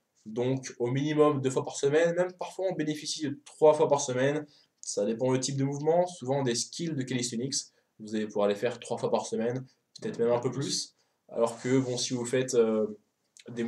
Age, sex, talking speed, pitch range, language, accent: 20-39, male, 215 wpm, 115-135 Hz, French, French